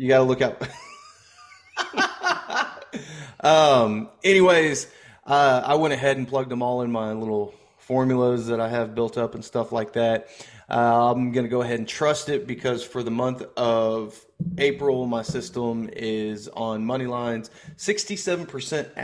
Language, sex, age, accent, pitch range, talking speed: English, male, 30-49, American, 115-140 Hz, 160 wpm